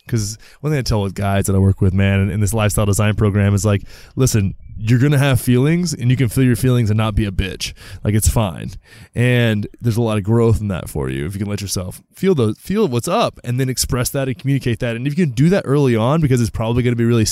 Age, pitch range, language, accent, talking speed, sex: 20-39, 105-125 Hz, English, American, 280 wpm, male